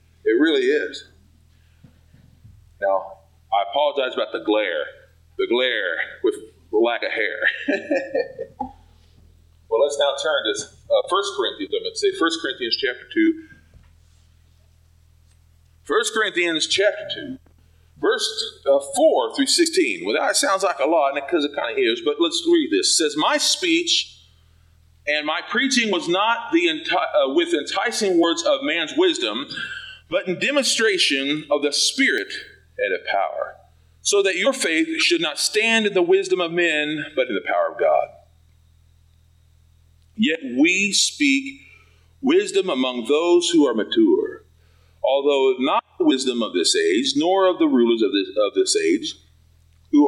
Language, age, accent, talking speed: English, 40-59, American, 155 wpm